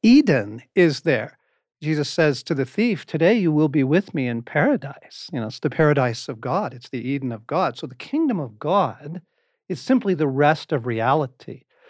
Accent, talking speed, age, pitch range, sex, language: American, 195 wpm, 50-69, 130-170 Hz, male, English